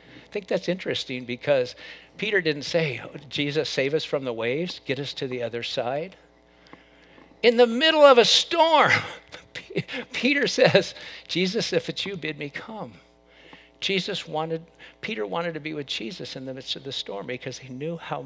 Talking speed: 175 wpm